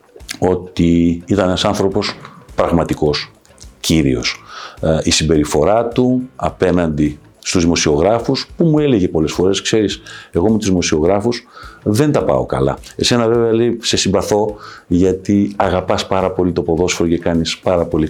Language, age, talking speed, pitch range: Greek, 50-69, 135 wpm, 85-115 Hz